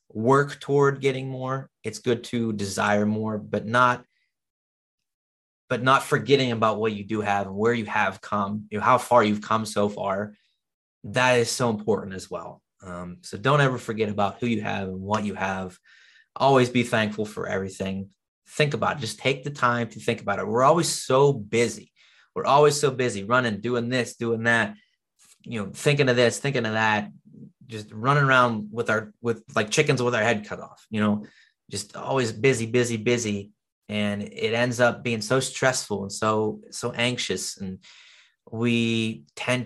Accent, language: American, English